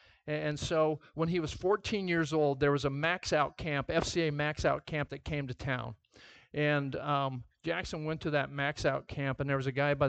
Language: English